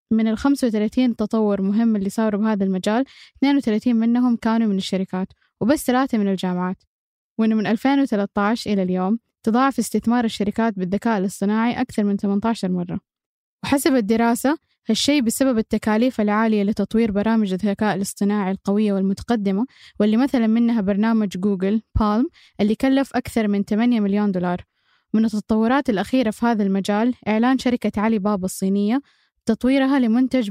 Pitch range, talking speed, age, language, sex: 205-240 Hz, 140 wpm, 10-29, Arabic, female